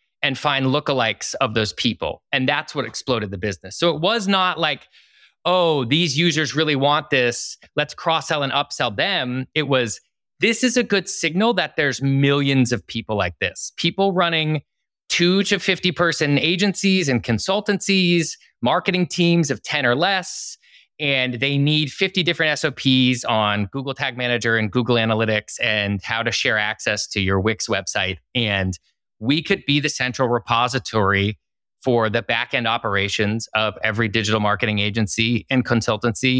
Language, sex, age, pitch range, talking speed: English, male, 30-49, 120-170 Hz, 160 wpm